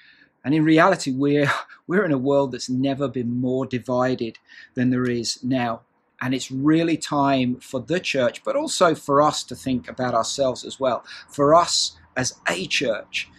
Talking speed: 175 wpm